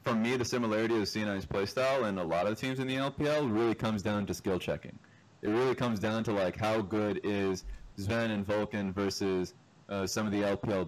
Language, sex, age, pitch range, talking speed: English, male, 20-39, 95-120 Hz, 215 wpm